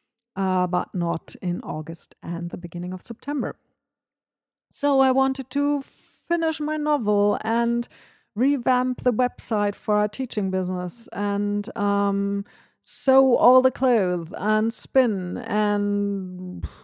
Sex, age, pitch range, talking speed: female, 50-69, 195-245 Hz, 120 wpm